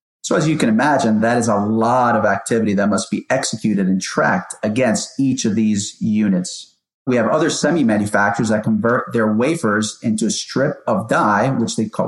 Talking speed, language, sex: 190 wpm, English, male